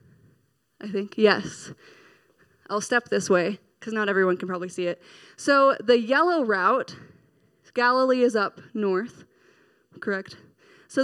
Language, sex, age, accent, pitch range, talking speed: English, female, 20-39, American, 190-250 Hz, 130 wpm